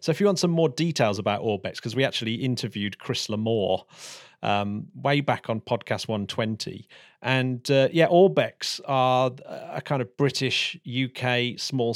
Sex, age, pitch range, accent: male, 40-59, 115-140 Hz, British